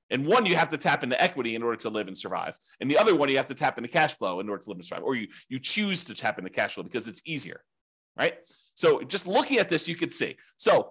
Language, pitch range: English, 120-165 Hz